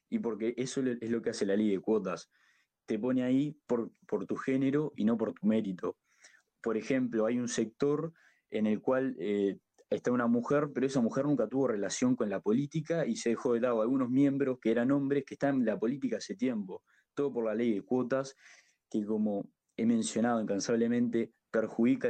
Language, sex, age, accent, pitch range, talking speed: Spanish, male, 20-39, Argentinian, 105-130 Hz, 200 wpm